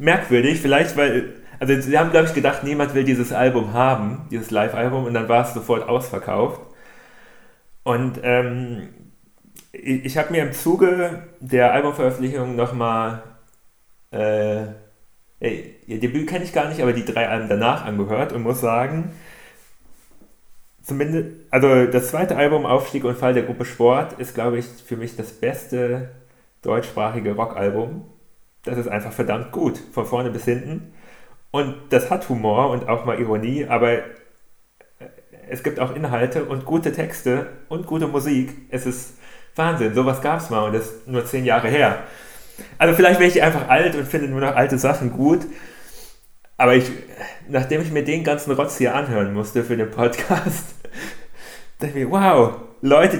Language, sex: German, male